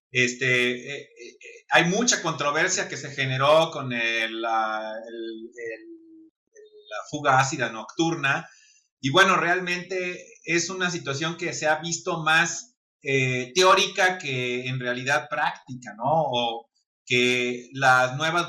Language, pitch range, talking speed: Spanish, 125-155 Hz, 130 wpm